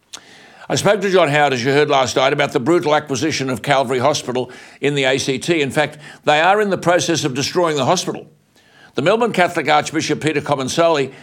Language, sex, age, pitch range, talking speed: English, male, 60-79, 140-165 Hz, 200 wpm